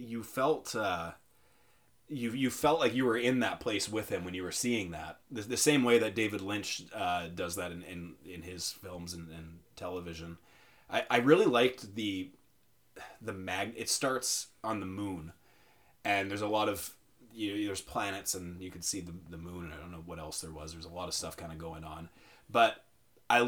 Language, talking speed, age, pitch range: English, 215 wpm, 30-49, 90-125 Hz